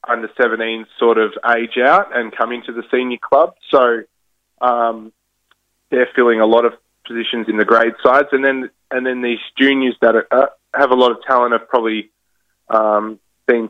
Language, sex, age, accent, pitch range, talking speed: English, male, 20-39, Australian, 105-120 Hz, 185 wpm